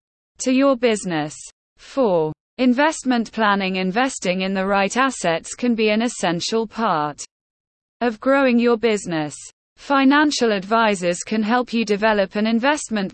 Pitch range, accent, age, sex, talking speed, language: 180-245 Hz, British, 20-39, female, 130 wpm, English